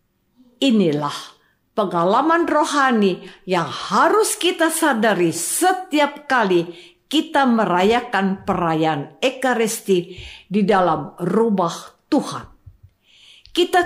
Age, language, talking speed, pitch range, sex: 50-69, Indonesian, 80 wpm, 190-310 Hz, female